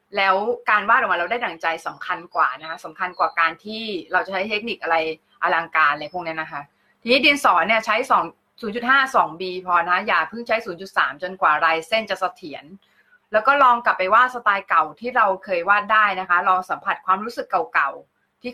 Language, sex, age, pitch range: Thai, female, 20-39, 185-255 Hz